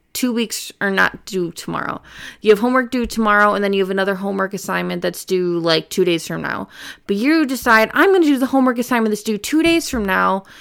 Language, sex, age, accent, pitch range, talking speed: English, female, 20-39, American, 195-240 Hz, 230 wpm